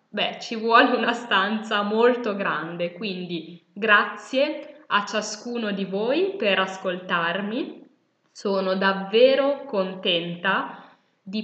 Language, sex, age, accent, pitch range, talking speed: Italian, female, 10-29, native, 180-225 Hz, 100 wpm